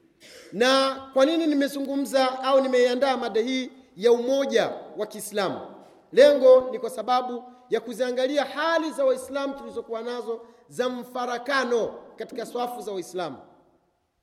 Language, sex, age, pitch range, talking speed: Swahili, male, 30-49, 245-285 Hz, 120 wpm